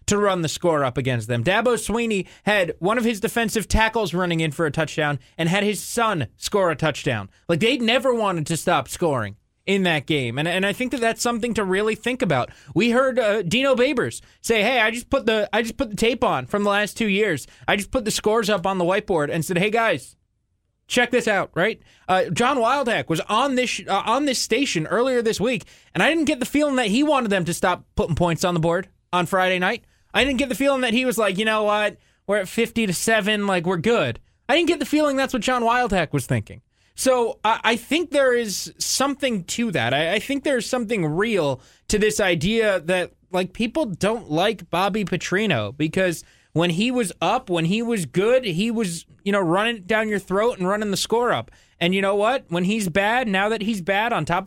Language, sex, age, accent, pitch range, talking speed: English, male, 20-39, American, 175-235 Hz, 235 wpm